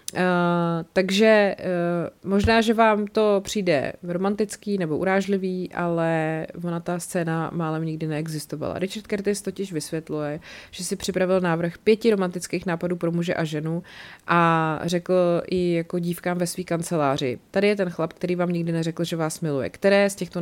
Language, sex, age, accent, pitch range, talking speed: Czech, female, 30-49, native, 160-185 Hz, 155 wpm